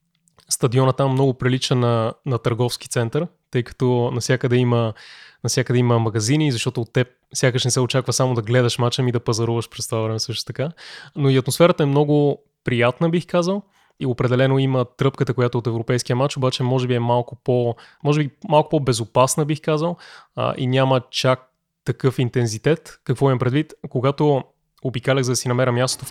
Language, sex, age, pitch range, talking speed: Bulgarian, male, 20-39, 120-140 Hz, 185 wpm